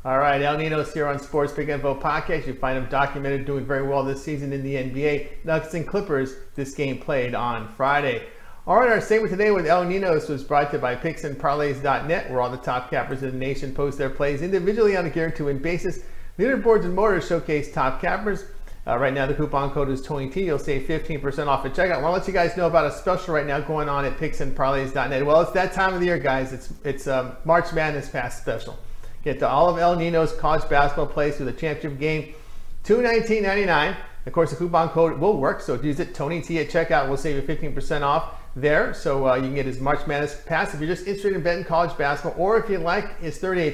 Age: 40-59